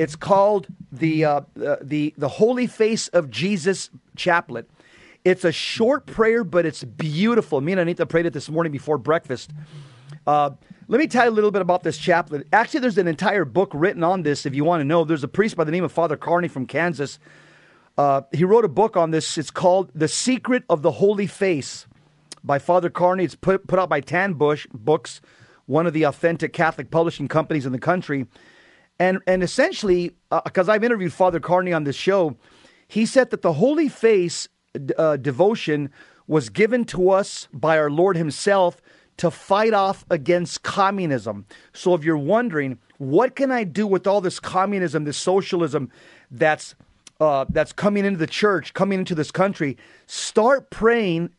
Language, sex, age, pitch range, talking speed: English, male, 40-59, 155-195 Hz, 185 wpm